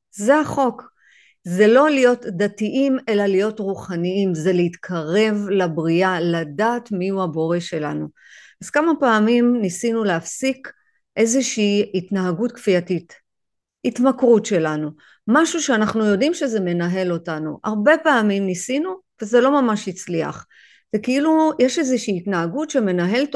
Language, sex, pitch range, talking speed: Hebrew, female, 185-260 Hz, 115 wpm